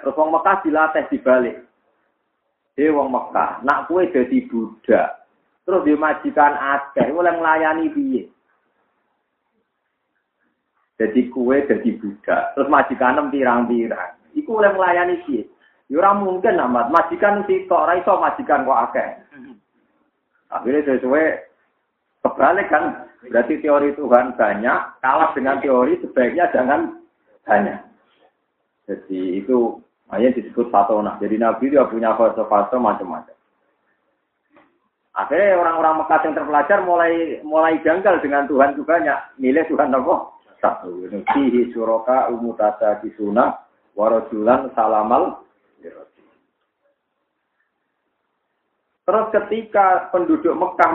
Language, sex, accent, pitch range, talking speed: Indonesian, male, native, 115-170 Hz, 110 wpm